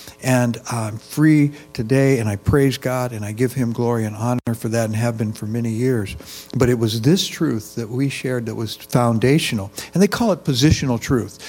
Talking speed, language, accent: 210 wpm, English, American